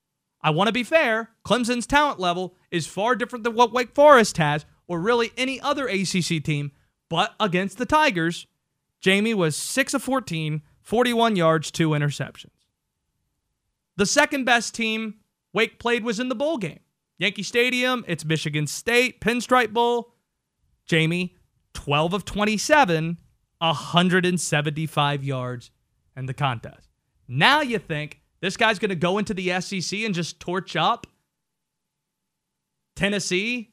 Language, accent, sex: English, American, male